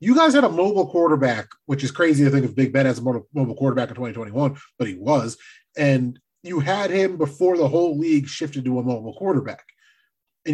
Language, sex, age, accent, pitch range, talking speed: English, male, 30-49, American, 130-170 Hz, 210 wpm